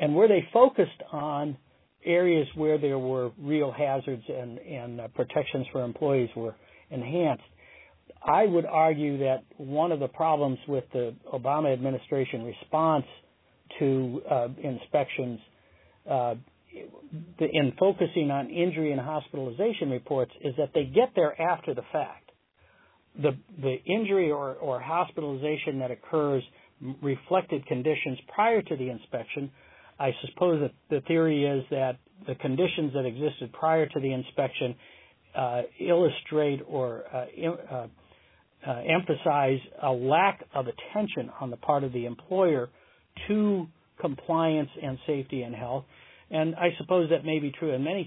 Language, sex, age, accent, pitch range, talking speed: English, male, 60-79, American, 130-160 Hz, 140 wpm